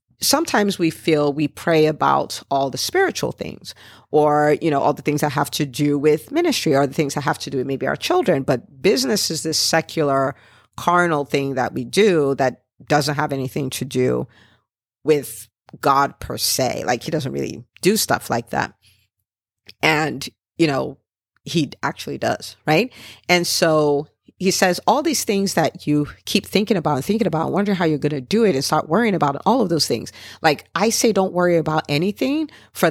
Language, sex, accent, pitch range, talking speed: English, female, American, 145-180 Hz, 195 wpm